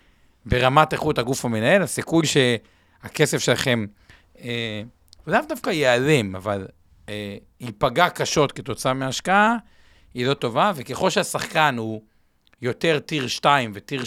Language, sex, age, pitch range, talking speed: Hebrew, male, 50-69, 115-155 Hz, 115 wpm